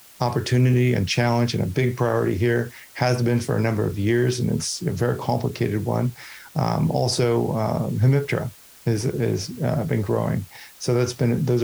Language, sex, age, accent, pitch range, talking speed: English, male, 40-59, American, 110-125 Hz, 175 wpm